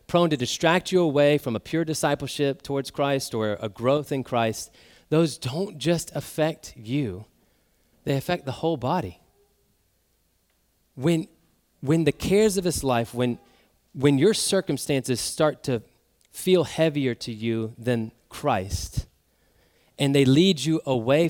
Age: 30-49